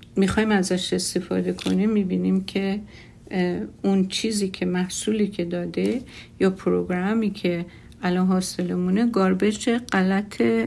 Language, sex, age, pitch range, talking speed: Persian, female, 50-69, 180-195 Hz, 105 wpm